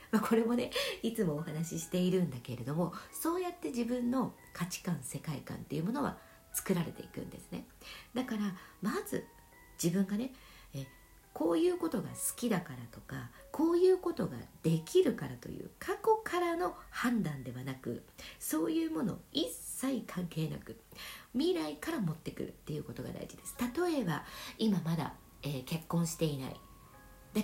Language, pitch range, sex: Japanese, 150-245 Hz, female